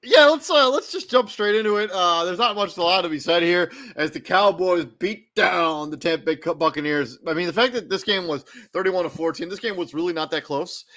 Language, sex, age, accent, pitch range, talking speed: English, male, 30-49, American, 145-170 Hz, 255 wpm